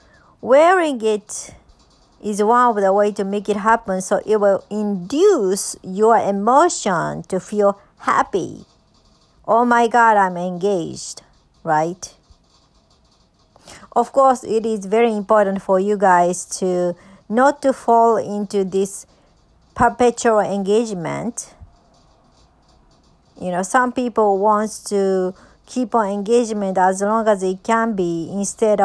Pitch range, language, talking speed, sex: 190-235 Hz, English, 125 wpm, male